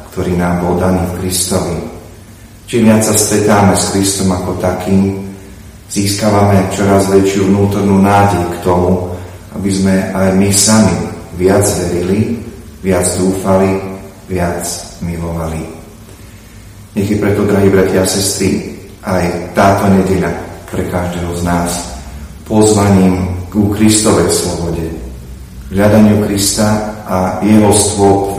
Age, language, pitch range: 40-59, Slovak, 90-100 Hz